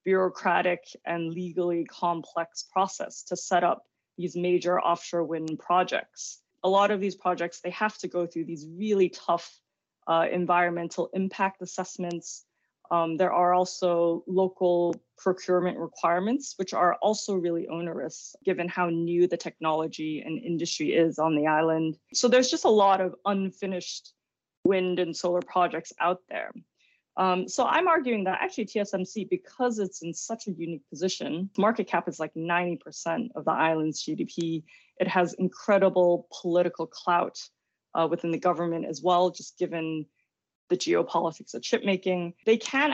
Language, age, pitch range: English, 20-39, 170-195 Hz